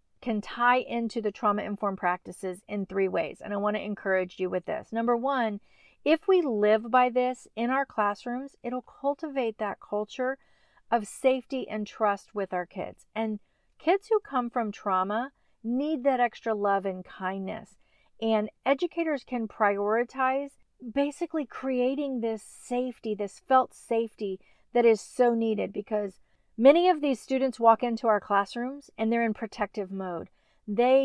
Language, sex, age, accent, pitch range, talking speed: English, female, 40-59, American, 205-265 Hz, 155 wpm